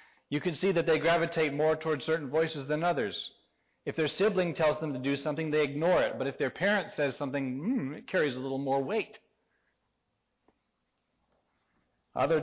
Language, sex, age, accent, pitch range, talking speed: English, male, 40-59, American, 125-170 Hz, 180 wpm